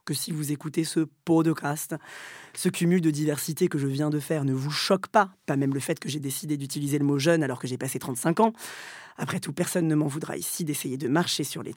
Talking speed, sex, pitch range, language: 255 wpm, female, 145-180 Hz, French